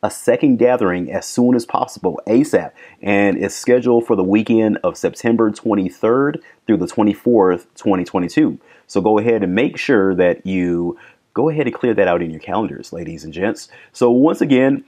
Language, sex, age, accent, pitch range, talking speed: English, male, 30-49, American, 100-135 Hz, 180 wpm